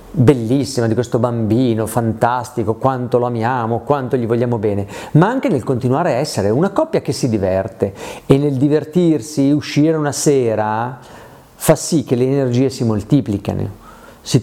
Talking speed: 155 wpm